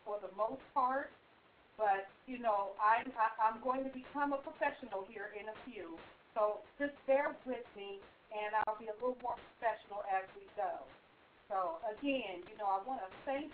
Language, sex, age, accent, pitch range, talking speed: English, female, 50-69, American, 210-260 Hz, 180 wpm